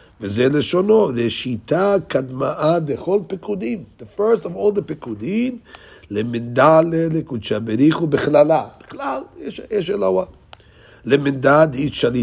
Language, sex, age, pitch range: English, male, 60-79, 115-165 Hz